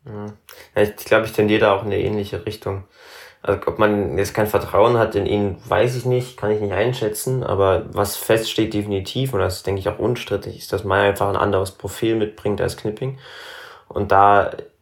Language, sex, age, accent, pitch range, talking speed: German, male, 20-39, German, 100-125 Hz, 205 wpm